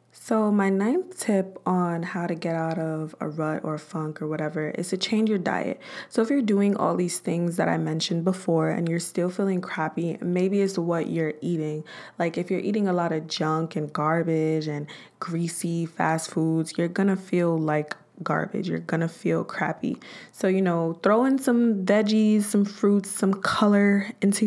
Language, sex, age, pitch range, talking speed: English, female, 20-39, 165-200 Hz, 190 wpm